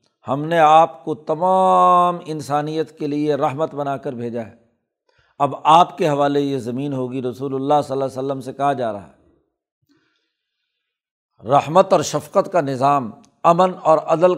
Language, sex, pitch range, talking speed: Urdu, male, 140-175 Hz, 165 wpm